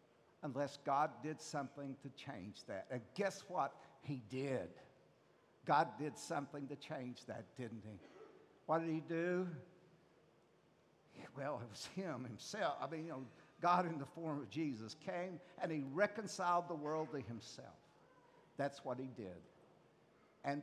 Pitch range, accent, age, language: 135-190 Hz, American, 60-79, English